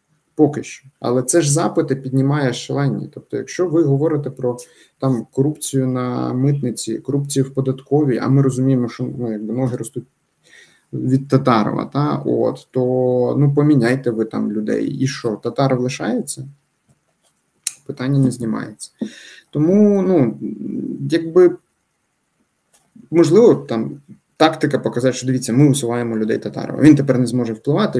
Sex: male